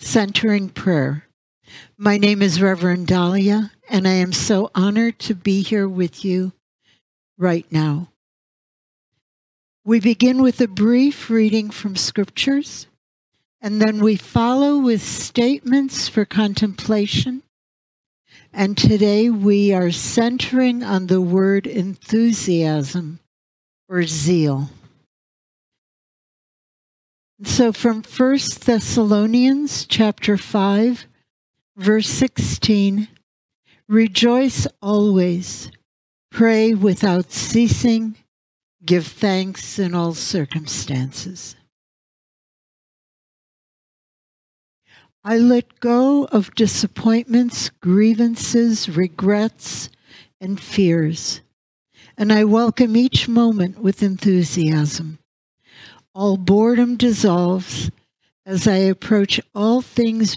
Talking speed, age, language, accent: 85 wpm, 60-79, English, American